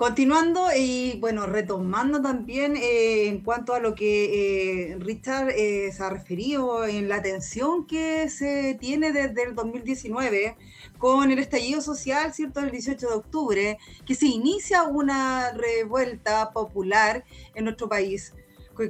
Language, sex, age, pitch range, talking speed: Spanish, female, 30-49, 215-275 Hz, 140 wpm